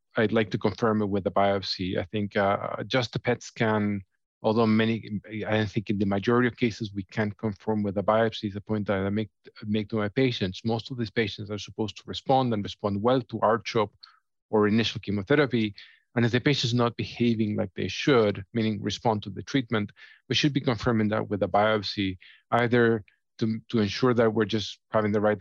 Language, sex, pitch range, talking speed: English, male, 105-115 Hz, 210 wpm